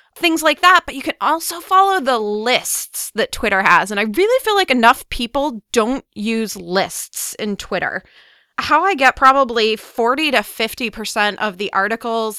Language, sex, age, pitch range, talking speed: English, female, 30-49, 210-260 Hz, 170 wpm